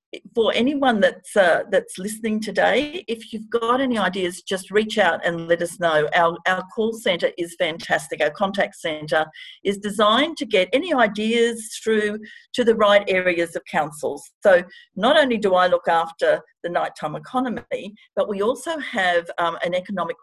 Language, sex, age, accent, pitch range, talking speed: English, female, 50-69, Australian, 180-235 Hz, 170 wpm